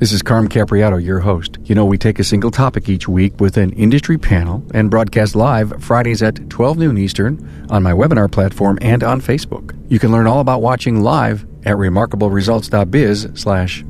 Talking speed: 190 wpm